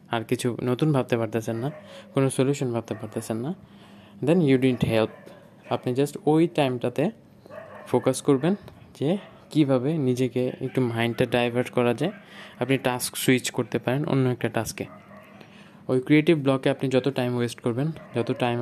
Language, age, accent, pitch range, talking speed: Bengali, 20-39, native, 120-145 Hz, 150 wpm